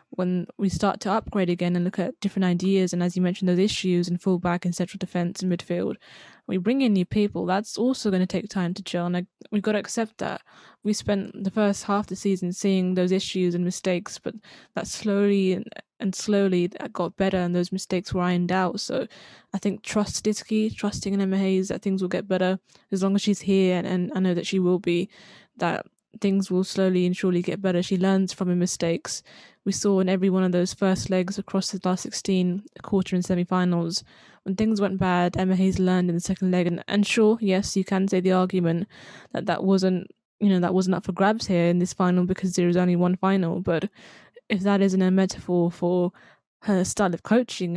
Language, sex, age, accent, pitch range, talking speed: English, female, 10-29, British, 180-200 Hz, 225 wpm